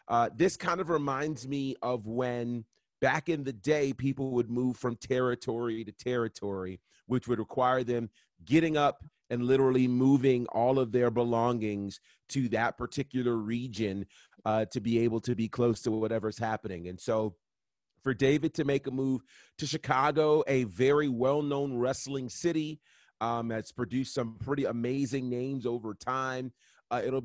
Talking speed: 160 wpm